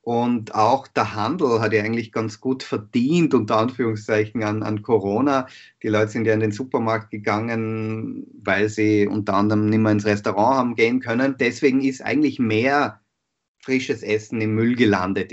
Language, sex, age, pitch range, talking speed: German, male, 30-49, 105-125 Hz, 170 wpm